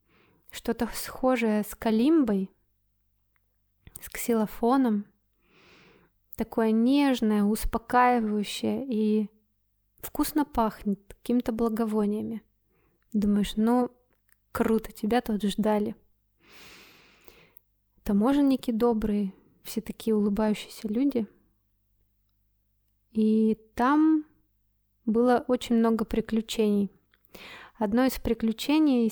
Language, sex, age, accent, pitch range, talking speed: Russian, female, 20-39, native, 210-245 Hz, 70 wpm